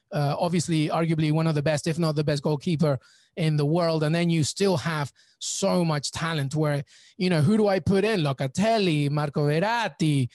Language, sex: English, male